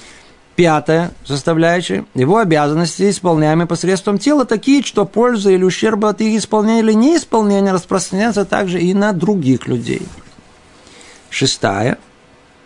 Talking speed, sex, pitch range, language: 115 wpm, male, 145-200 Hz, Russian